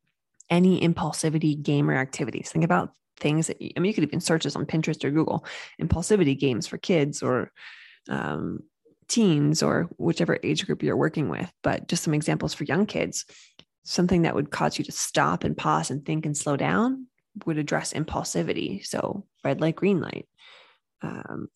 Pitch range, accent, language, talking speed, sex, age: 155-195 Hz, American, English, 180 wpm, female, 20-39